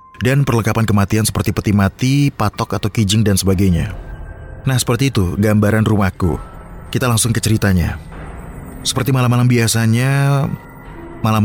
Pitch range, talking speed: 95-115 Hz, 125 wpm